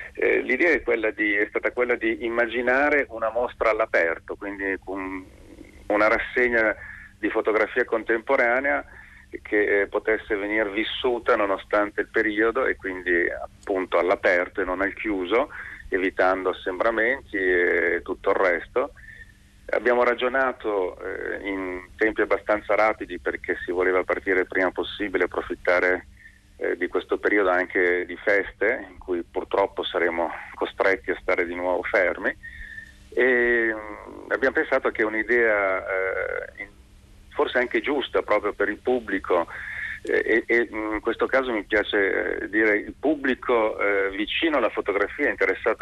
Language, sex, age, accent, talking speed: Italian, male, 40-59, native, 130 wpm